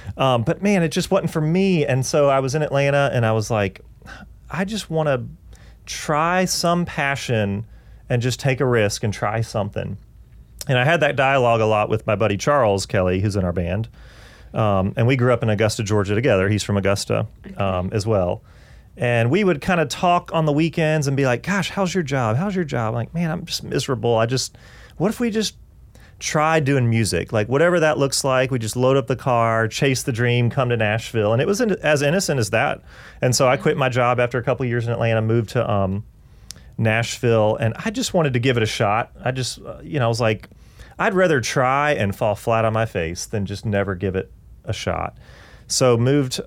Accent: American